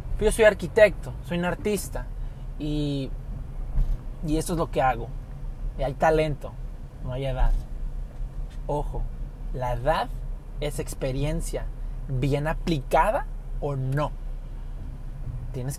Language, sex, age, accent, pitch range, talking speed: Spanish, male, 30-49, Mexican, 130-170 Hz, 110 wpm